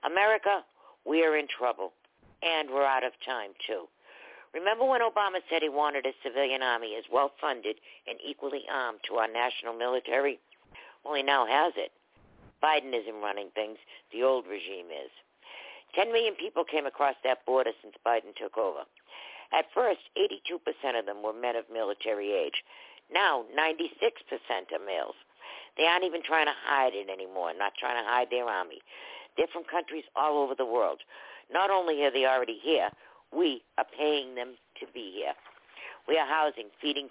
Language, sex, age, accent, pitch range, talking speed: English, female, 60-79, American, 125-190 Hz, 170 wpm